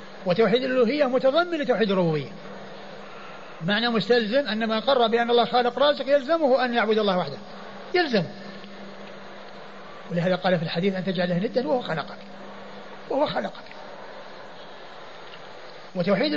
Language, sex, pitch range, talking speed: Arabic, male, 190-240 Hz, 115 wpm